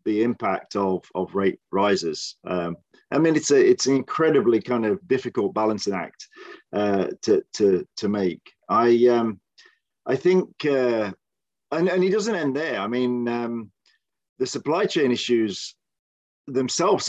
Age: 40-59